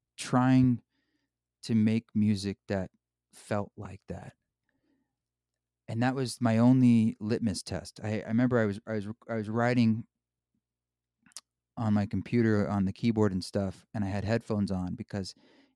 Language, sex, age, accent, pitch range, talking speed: English, male, 30-49, American, 95-120 Hz, 150 wpm